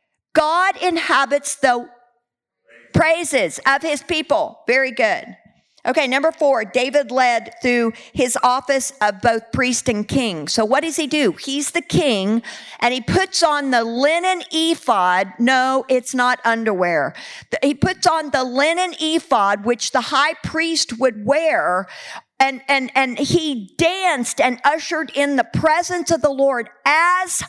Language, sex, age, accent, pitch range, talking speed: English, female, 50-69, American, 240-320 Hz, 145 wpm